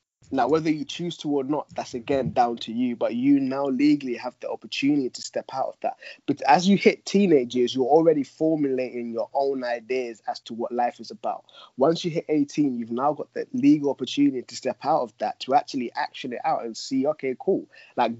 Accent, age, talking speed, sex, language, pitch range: British, 20-39, 220 wpm, male, English, 120-160 Hz